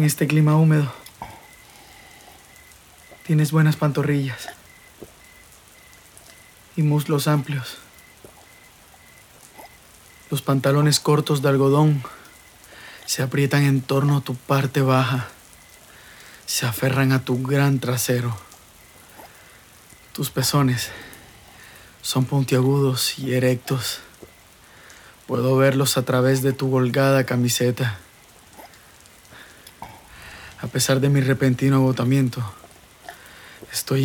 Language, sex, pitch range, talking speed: Spanish, male, 120-135 Hz, 90 wpm